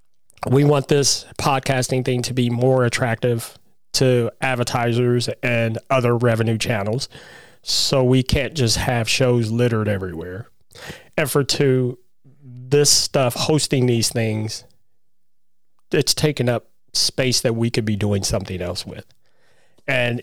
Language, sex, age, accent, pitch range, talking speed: English, male, 30-49, American, 115-135 Hz, 130 wpm